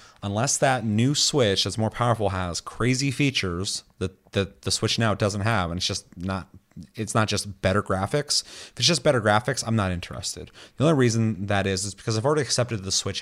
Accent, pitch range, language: American, 95-115 Hz, English